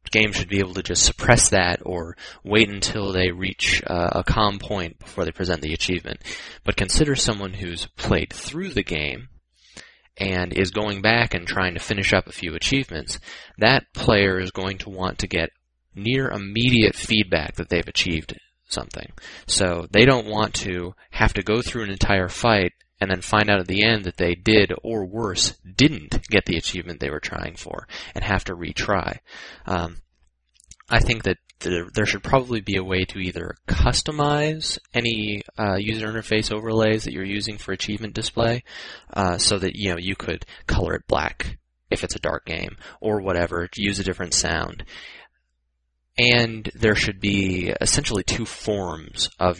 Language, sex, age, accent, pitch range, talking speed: English, male, 20-39, American, 90-110 Hz, 175 wpm